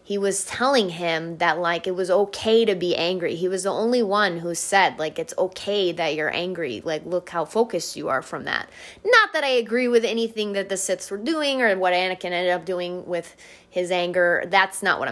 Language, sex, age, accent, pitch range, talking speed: English, female, 20-39, American, 165-195 Hz, 220 wpm